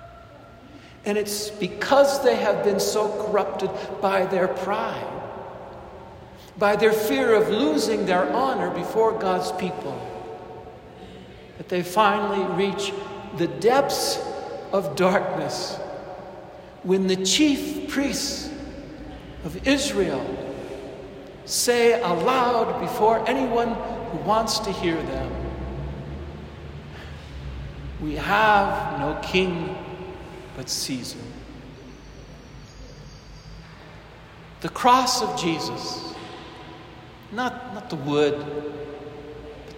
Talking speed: 90 wpm